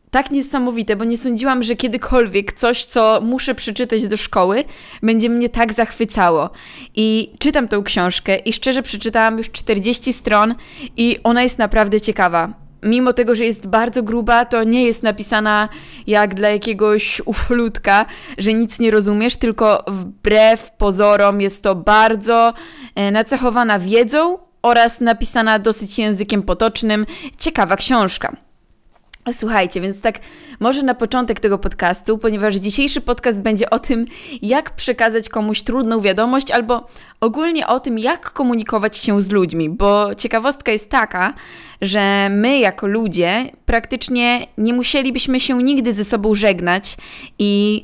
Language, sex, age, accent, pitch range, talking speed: Polish, female, 20-39, native, 205-240 Hz, 140 wpm